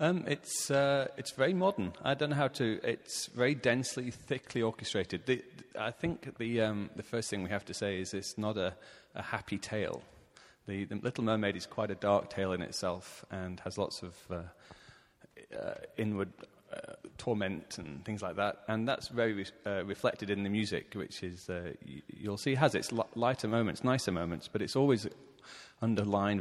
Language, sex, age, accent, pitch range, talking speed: English, male, 30-49, British, 95-115 Hz, 190 wpm